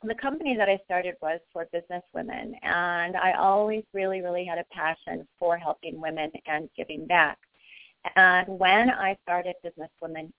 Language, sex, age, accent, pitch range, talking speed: English, female, 40-59, American, 160-185 Hz, 170 wpm